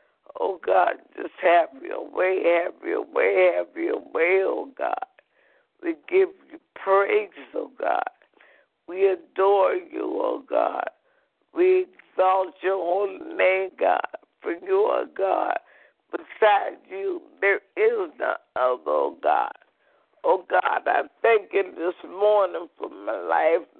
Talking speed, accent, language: 135 wpm, American, English